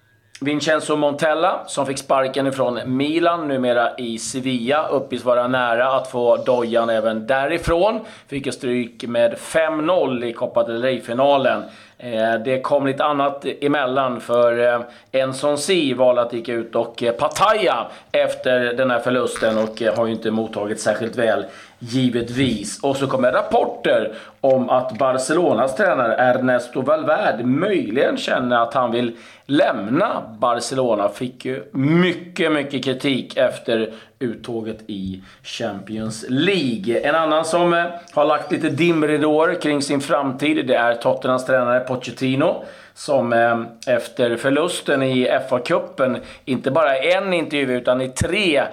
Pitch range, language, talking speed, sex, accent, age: 115-140 Hz, Swedish, 130 wpm, male, native, 30-49